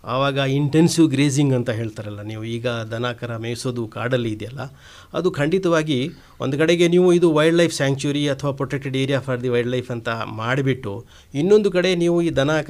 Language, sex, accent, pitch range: Hindi, male, native, 120-170 Hz